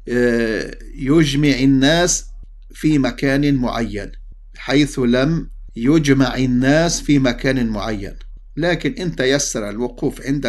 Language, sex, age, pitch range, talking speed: English, male, 50-69, 110-135 Hz, 95 wpm